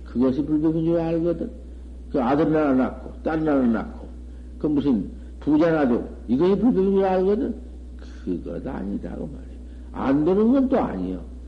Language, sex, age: Korean, male, 60-79